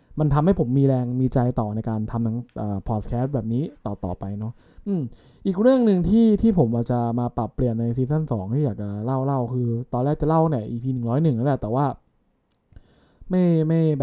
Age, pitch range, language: 20-39, 115-145 Hz, English